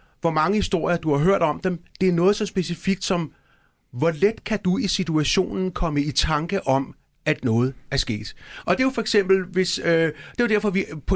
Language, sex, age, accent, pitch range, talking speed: Danish, male, 30-49, native, 140-190 Hz, 230 wpm